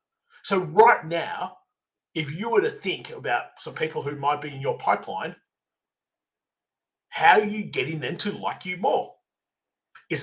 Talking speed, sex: 160 wpm, male